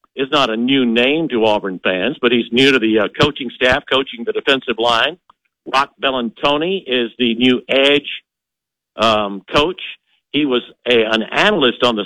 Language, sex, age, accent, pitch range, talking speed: English, male, 60-79, American, 115-150 Hz, 175 wpm